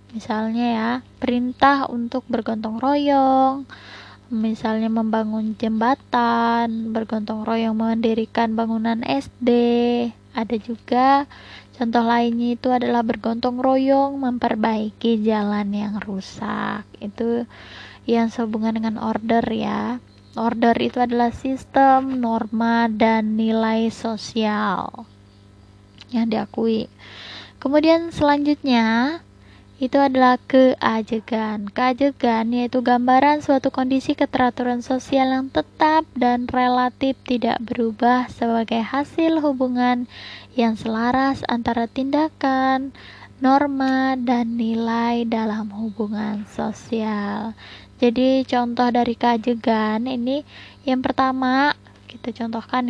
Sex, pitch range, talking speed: female, 225-260 Hz, 95 wpm